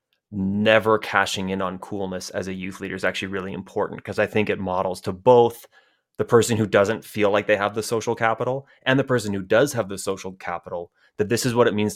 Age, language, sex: 20-39, English, male